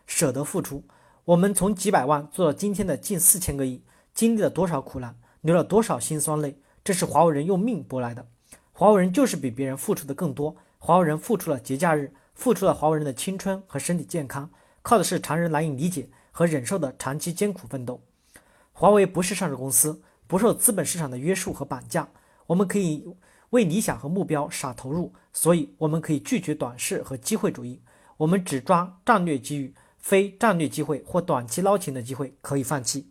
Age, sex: 40-59, male